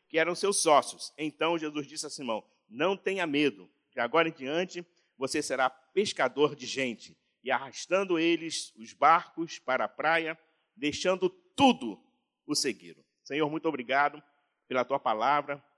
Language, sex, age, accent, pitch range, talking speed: Portuguese, male, 50-69, Brazilian, 140-185 Hz, 150 wpm